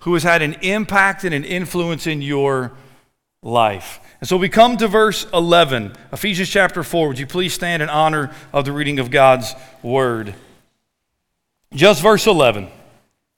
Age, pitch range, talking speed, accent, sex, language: 40-59, 160-220 Hz, 160 wpm, American, male, English